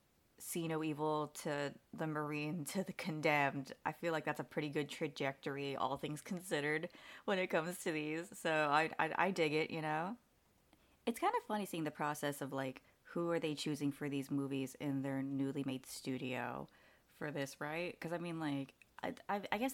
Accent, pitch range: American, 140-180 Hz